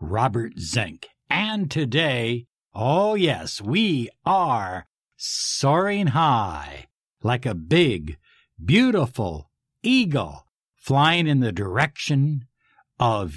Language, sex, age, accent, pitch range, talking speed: English, male, 60-79, American, 130-175 Hz, 90 wpm